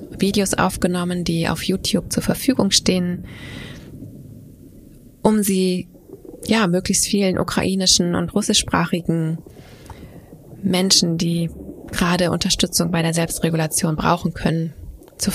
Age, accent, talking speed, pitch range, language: 20-39, German, 100 wpm, 165-190 Hz, German